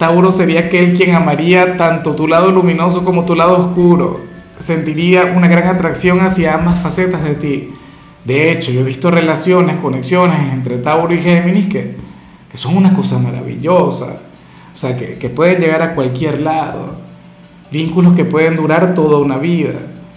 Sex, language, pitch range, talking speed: male, Spanish, 145-180 Hz, 165 wpm